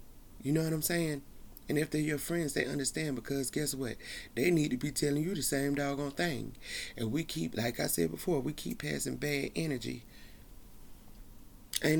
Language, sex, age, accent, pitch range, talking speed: English, male, 30-49, American, 115-140 Hz, 190 wpm